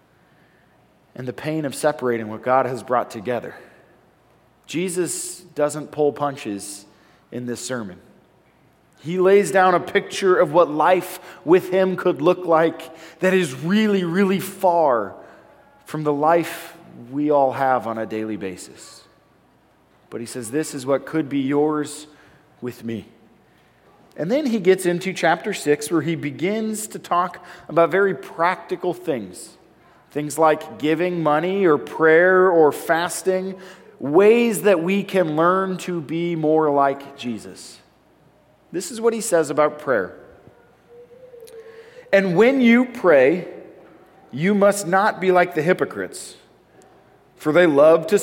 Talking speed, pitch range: 140 wpm, 140-185 Hz